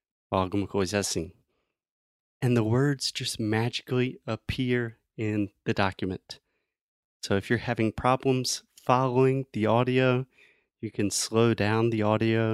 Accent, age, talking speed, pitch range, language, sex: American, 30-49, 110 wpm, 110-145 Hz, Portuguese, male